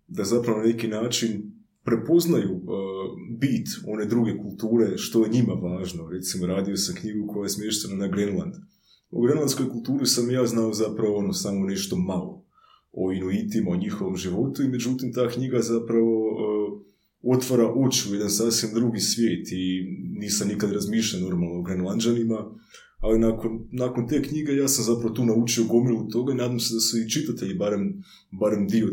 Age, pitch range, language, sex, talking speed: 20-39, 100-120 Hz, Croatian, male, 170 wpm